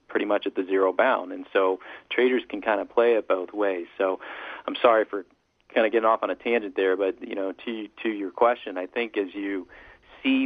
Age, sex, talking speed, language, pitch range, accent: 40-59, male, 230 wpm, English, 90-100 Hz, American